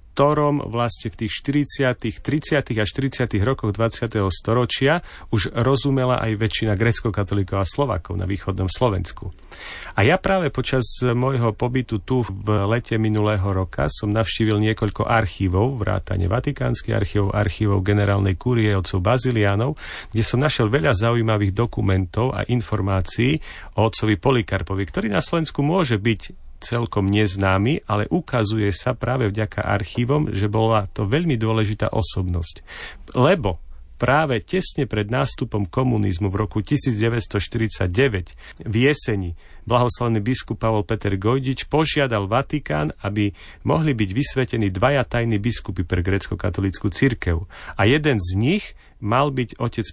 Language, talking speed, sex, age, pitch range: Slovak, 130 wpm, male, 40-59, 100-125 Hz